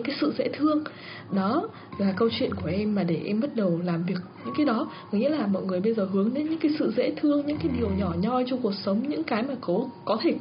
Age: 20-39